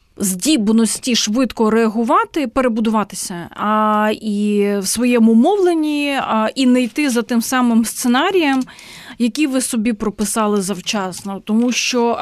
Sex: female